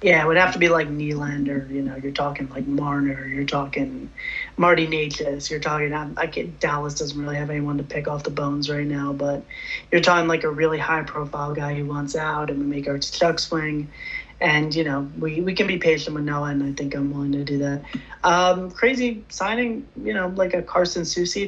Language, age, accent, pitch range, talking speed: English, 30-49, American, 145-170 Hz, 220 wpm